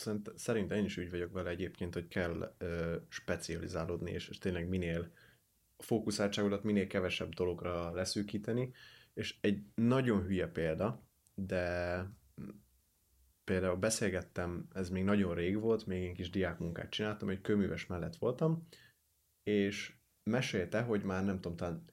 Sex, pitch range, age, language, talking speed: male, 90-105 Hz, 30-49, Hungarian, 130 wpm